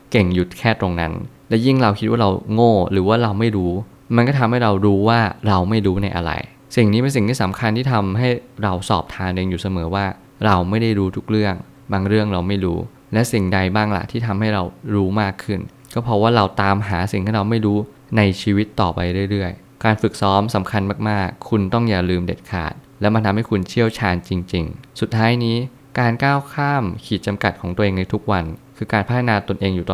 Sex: male